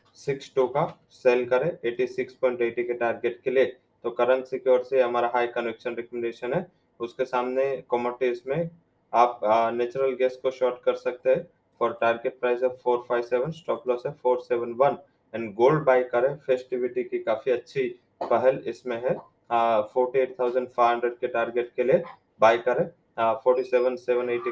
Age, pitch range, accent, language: 20-39, 120-130 Hz, Indian, English